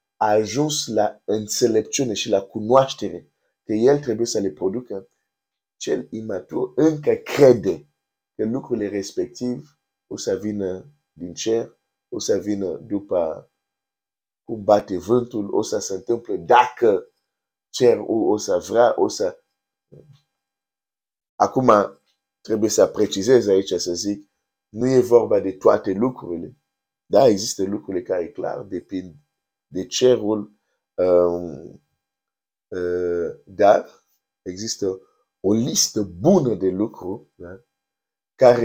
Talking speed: 110 wpm